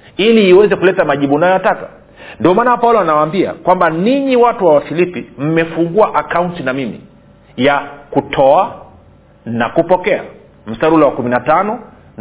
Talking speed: 125 wpm